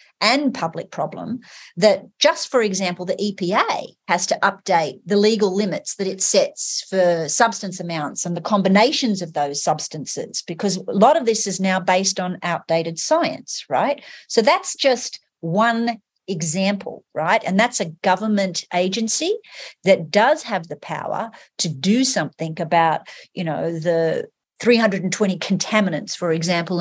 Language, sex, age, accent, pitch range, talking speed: English, female, 40-59, Australian, 175-230 Hz, 150 wpm